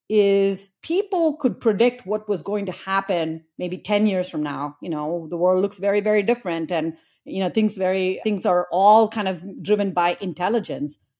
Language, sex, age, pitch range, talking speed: English, female, 40-59, 170-220 Hz, 190 wpm